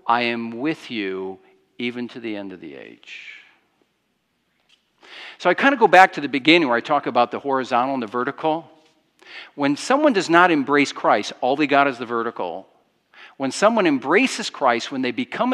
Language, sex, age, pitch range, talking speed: English, male, 50-69, 120-180 Hz, 185 wpm